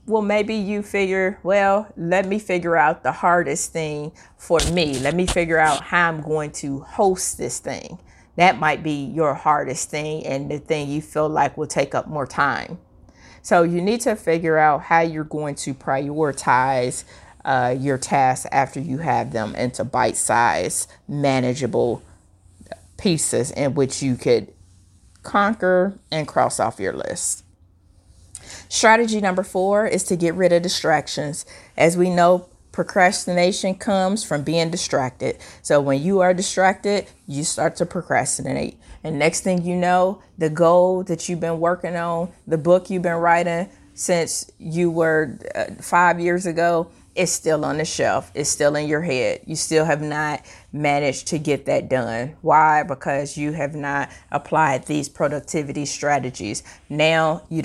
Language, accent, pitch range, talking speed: English, American, 145-180 Hz, 160 wpm